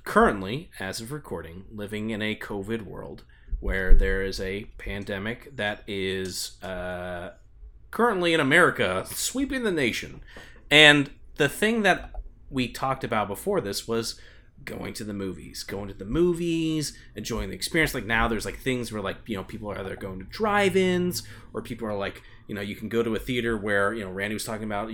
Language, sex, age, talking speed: English, male, 30-49, 190 wpm